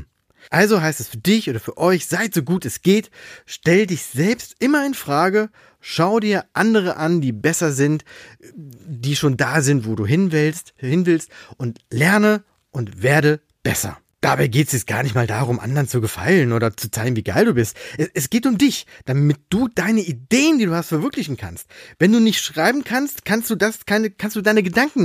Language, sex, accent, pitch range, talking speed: German, male, German, 130-195 Hz, 205 wpm